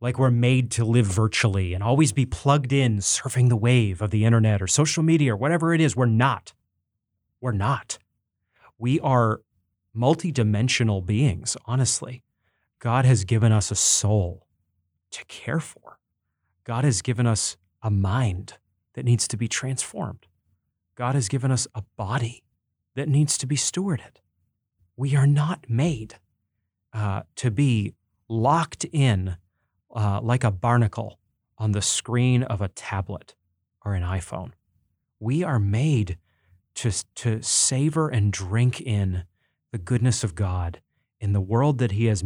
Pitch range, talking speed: 95-130 Hz, 150 wpm